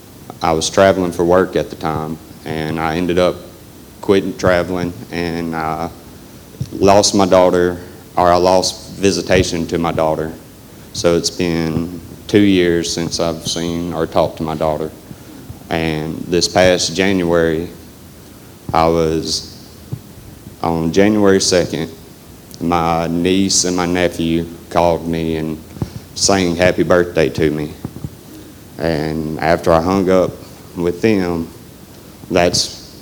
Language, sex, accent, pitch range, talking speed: English, male, American, 80-90 Hz, 125 wpm